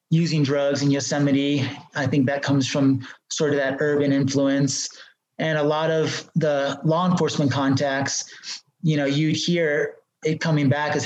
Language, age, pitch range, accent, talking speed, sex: English, 30-49, 140-165 Hz, American, 170 wpm, male